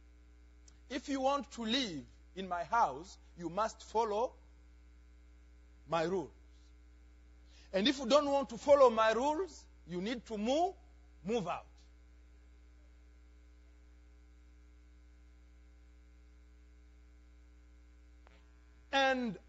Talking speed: 90 wpm